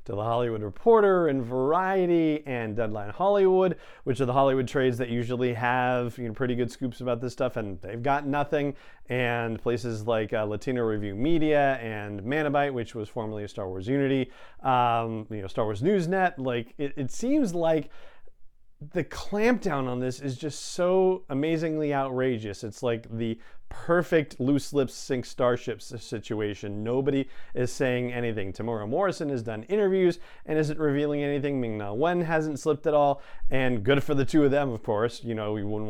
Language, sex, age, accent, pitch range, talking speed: English, male, 40-59, American, 115-150 Hz, 180 wpm